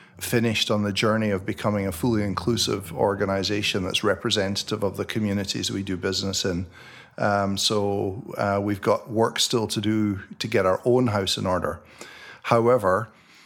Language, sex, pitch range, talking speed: English, male, 100-115 Hz, 160 wpm